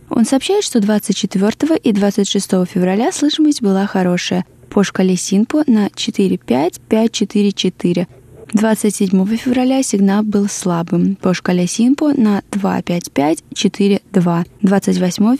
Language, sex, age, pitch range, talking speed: Russian, female, 20-39, 185-225 Hz, 100 wpm